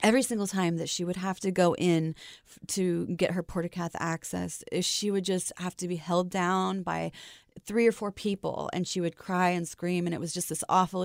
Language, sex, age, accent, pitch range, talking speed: English, female, 30-49, American, 170-200 Hz, 225 wpm